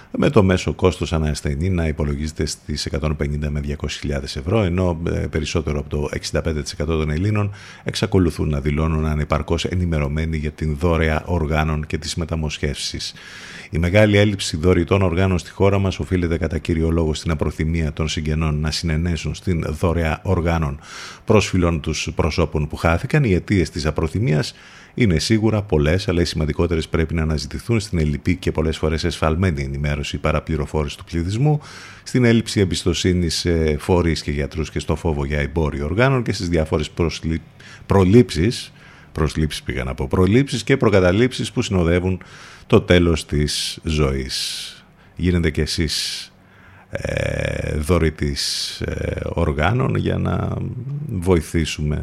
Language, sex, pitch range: Greek, male, 75-95 Hz